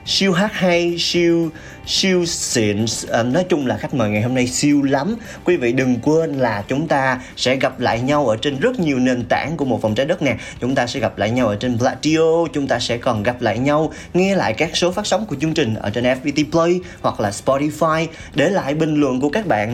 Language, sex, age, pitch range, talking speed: Vietnamese, male, 20-39, 115-160 Hz, 235 wpm